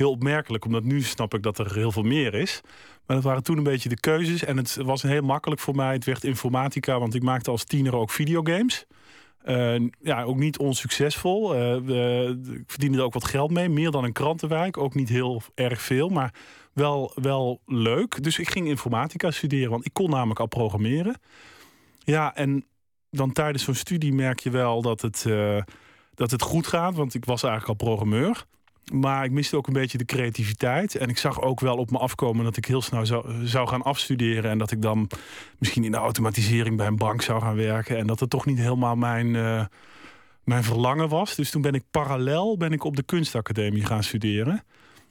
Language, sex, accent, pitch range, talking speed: Dutch, male, Dutch, 115-145 Hz, 205 wpm